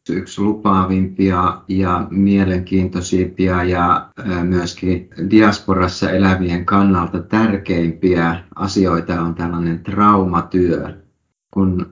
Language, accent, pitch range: Finnish, native, 90-100 Hz